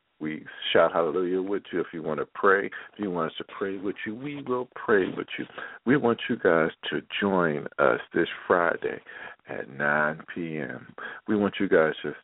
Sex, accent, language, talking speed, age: male, American, English, 195 wpm, 50-69